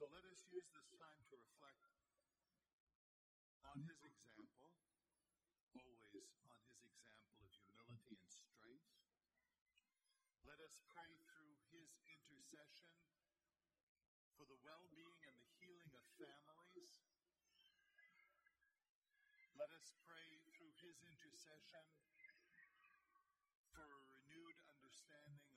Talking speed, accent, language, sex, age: 100 wpm, American, English, male, 50-69